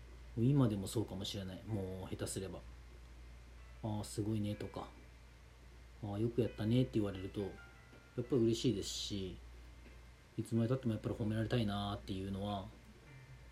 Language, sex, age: Japanese, male, 40-59